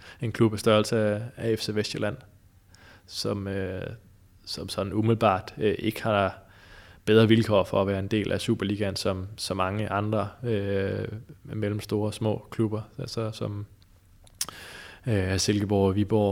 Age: 20-39